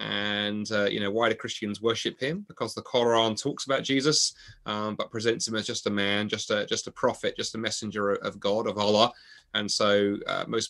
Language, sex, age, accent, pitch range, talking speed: English, male, 30-49, British, 100-120 Hz, 220 wpm